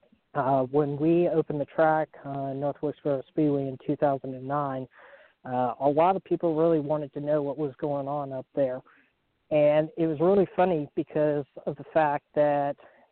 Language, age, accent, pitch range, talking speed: English, 40-59, American, 140-165 Hz, 170 wpm